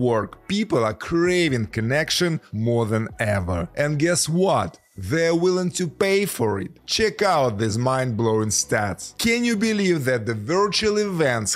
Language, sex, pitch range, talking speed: English, male, 115-175 Hz, 150 wpm